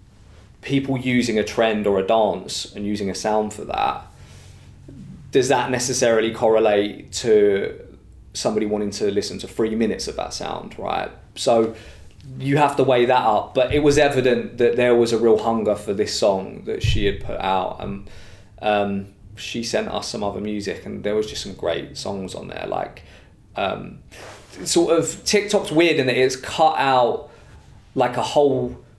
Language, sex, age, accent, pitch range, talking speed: English, male, 20-39, British, 105-130 Hz, 175 wpm